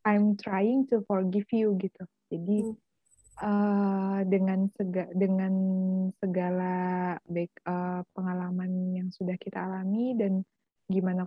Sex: female